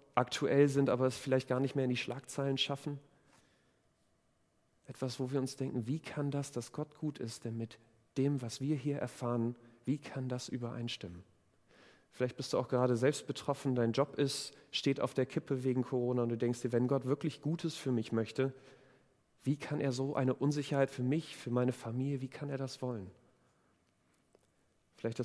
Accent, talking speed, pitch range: German, 190 wpm, 120-145 Hz